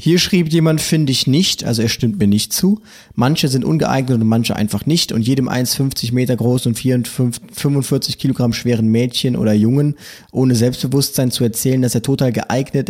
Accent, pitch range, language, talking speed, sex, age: German, 115-140 Hz, German, 180 wpm, male, 20-39